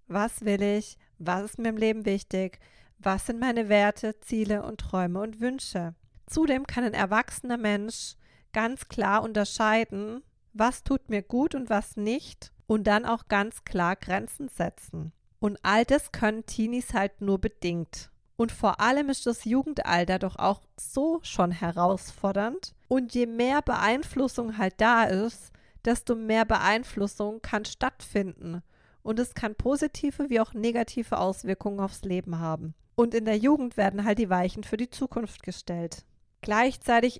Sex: female